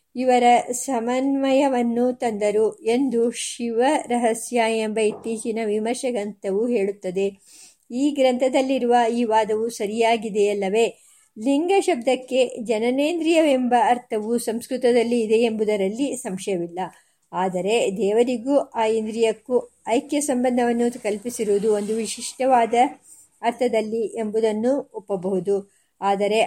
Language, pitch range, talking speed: Kannada, 215-250 Hz, 80 wpm